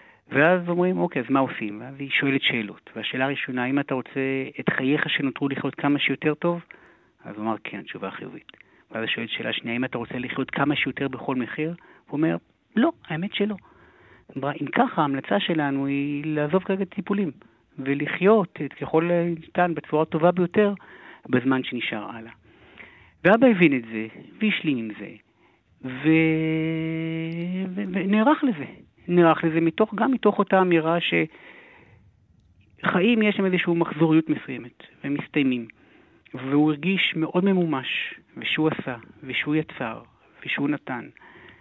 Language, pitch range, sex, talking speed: Hebrew, 135-175 Hz, male, 145 wpm